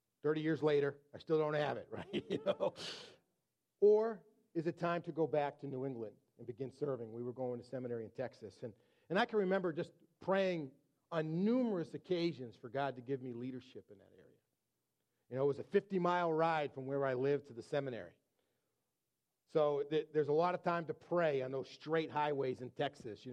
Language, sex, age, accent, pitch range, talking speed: English, male, 40-59, American, 130-160 Hz, 210 wpm